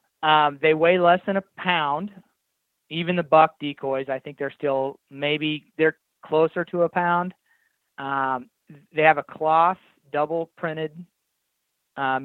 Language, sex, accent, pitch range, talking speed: English, male, American, 140-160 Hz, 140 wpm